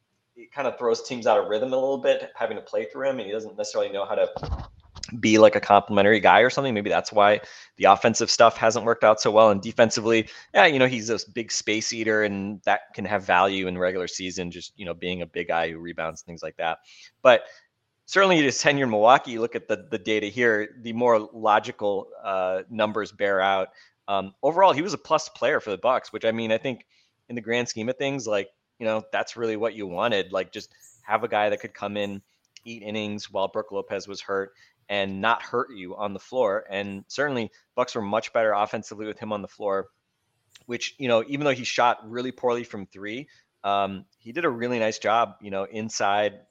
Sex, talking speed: male, 225 wpm